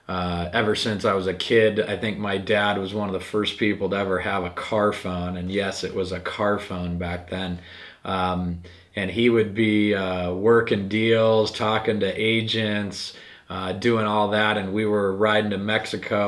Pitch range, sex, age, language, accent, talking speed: 95-110 Hz, male, 30-49, English, American, 195 wpm